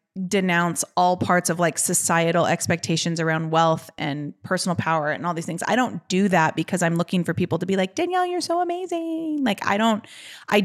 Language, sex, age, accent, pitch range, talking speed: English, female, 20-39, American, 170-200 Hz, 205 wpm